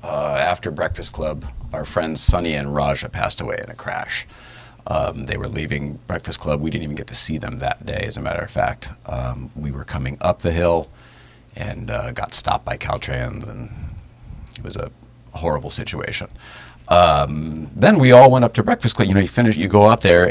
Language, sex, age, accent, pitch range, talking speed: English, male, 40-59, American, 75-105 Hz, 205 wpm